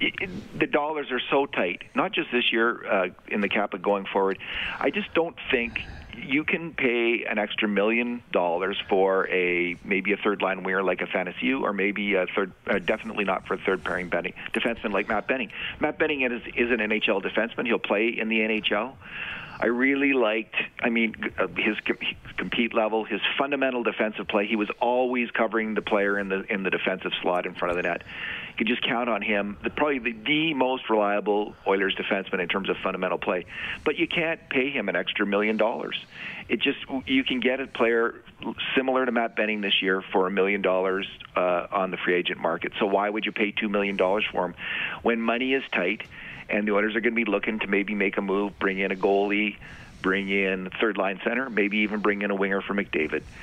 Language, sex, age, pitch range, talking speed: English, male, 40-59, 100-125 Hz, 210 wpm